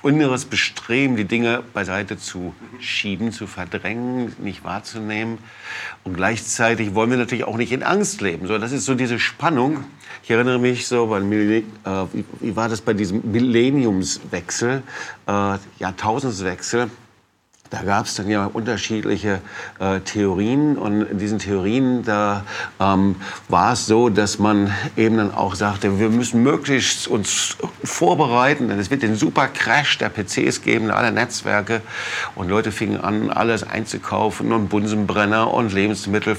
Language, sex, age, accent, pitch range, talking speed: German, male, 50-69, German, 100-125 Hz, 150 wpm